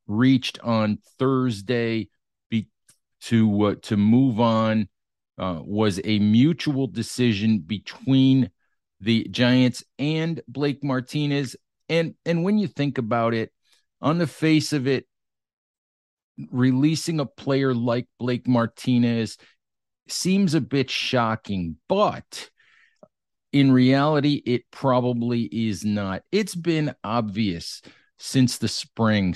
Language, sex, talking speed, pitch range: English, male, 110 wpm, 105-125 Hz